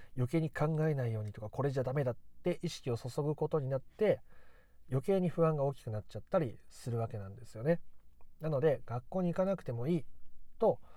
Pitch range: 115-165 Hz